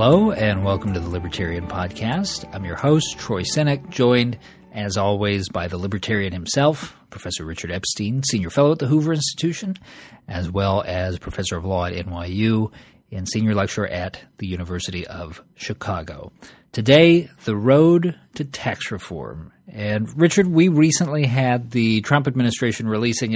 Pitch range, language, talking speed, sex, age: 105-140 Hz, English, 150 wpm, male, 40-59